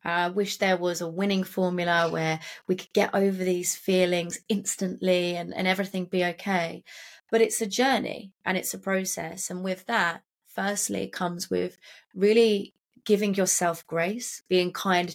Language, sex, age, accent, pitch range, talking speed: English, female, 20-39, British, 175-205 Hz, 165 wpm